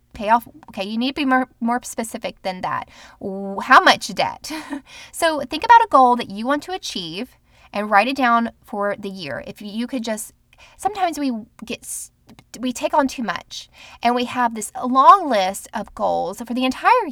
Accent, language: American, English